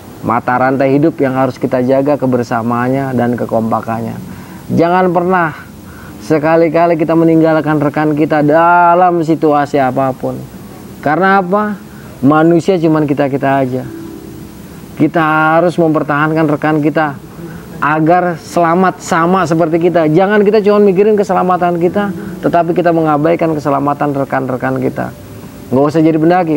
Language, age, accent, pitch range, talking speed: Indonesian, 30-49, native, 135-165 Hz, 115 wpm